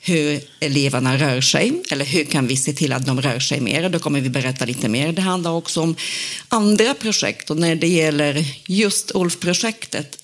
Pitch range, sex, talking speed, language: 145-185 Hz, female, 200 wpm, Swedish